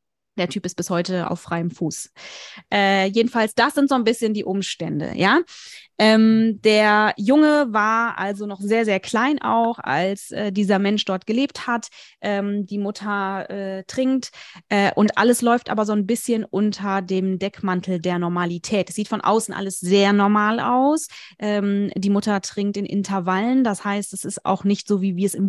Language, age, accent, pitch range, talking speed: German, 20-39, German, 195-225 Hz, 185 wpm